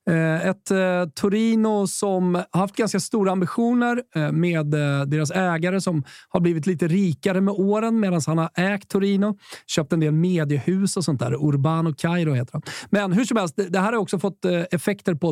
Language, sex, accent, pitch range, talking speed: Swedish, male, native, 160-200 Hz, 170 wpm